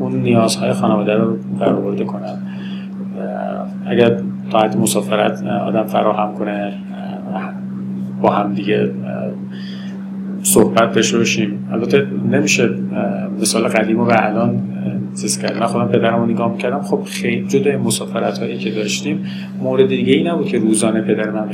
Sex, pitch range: male, 65-110 Hz